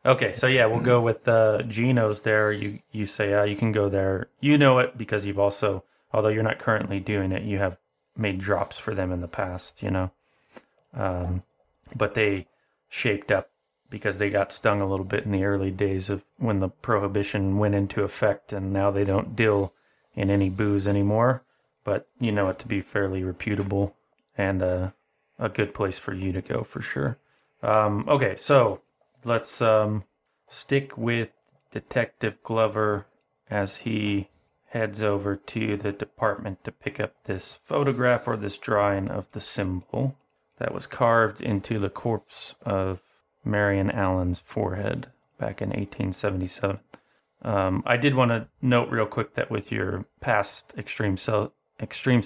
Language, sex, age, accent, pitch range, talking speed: English, male, 30-49, American, 95-110 Hz, 170 wpm